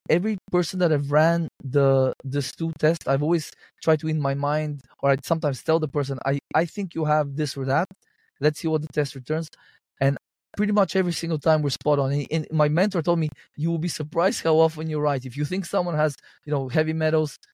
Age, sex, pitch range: 20-39, male, 135-170 Hz